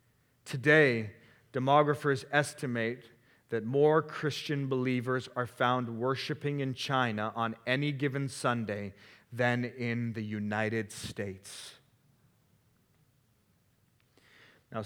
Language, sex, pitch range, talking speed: English, male, 130-195 Hz, 90 wpm